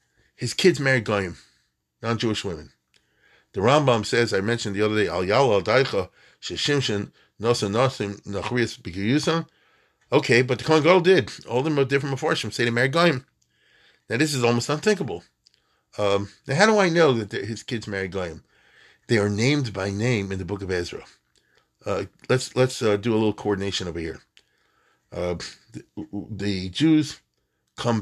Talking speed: 155 wpm